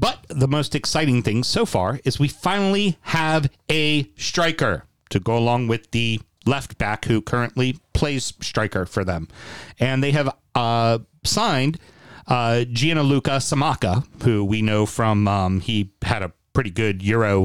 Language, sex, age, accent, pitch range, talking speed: English, male, 40-59, American, 105-140 Hz, 155 wpm